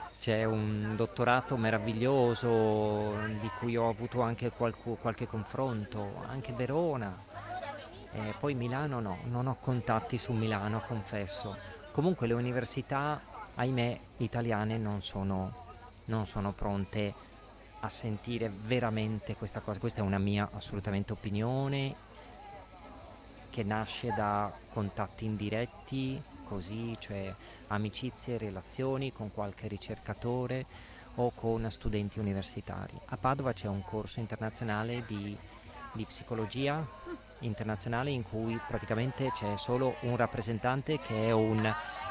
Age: 30-49